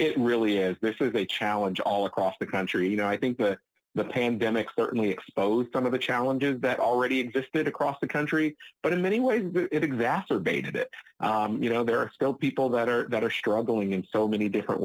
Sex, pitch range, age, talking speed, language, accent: male, 110-135 Hz, 40-59, 215 wpm, English, American